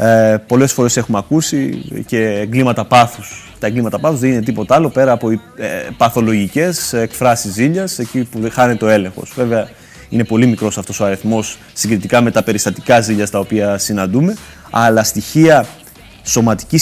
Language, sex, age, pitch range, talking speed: Greek, male, 30-49, 110-135 Hz, 150 wpm